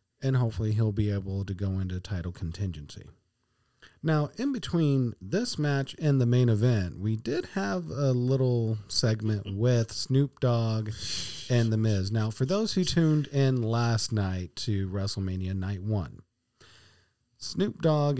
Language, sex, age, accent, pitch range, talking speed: English, male, 40-59, American, 100-130 Hz, 150 wpm